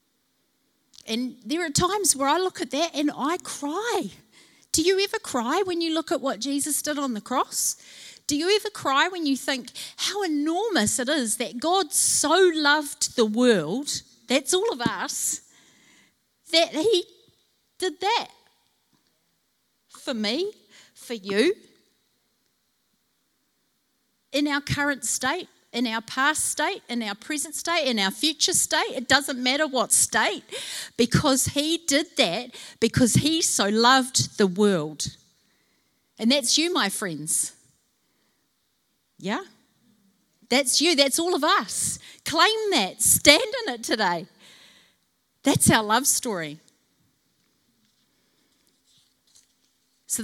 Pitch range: 230-330 Hz